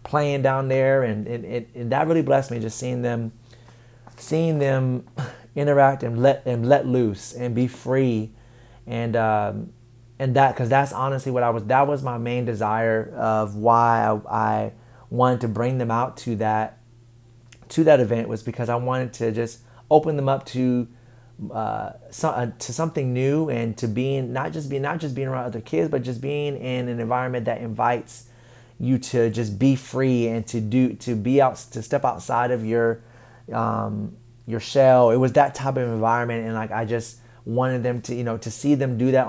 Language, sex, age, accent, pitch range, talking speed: English, male, 30-49, American, 115-125 Hz, 195 wpm